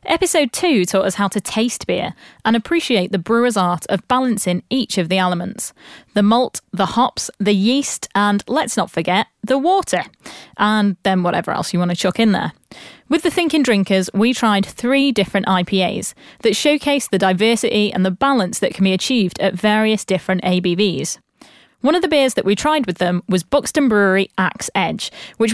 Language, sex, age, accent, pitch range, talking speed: English, female, 20-39, British, 190-265 Hz, 190 wpm